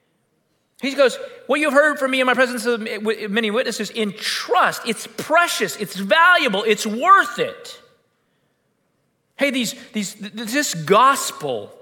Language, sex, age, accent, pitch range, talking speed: English, male, 40-59, American, 190-275 Hz, 130 wpm